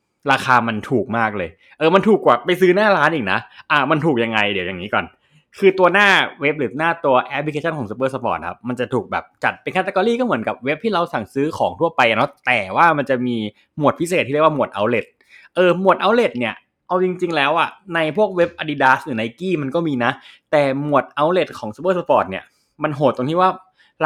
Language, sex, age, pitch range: Thai, male, 20-39, 130-180 Hz